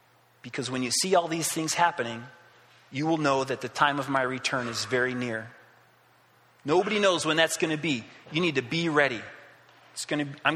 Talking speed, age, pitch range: 200 wpm, 30-49, 135-170 Hz